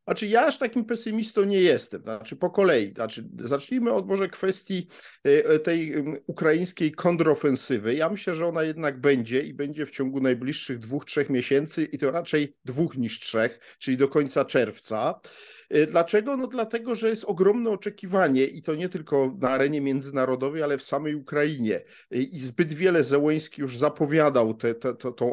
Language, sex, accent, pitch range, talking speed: Polish, male, native, 130-175 Hz, 160 wpm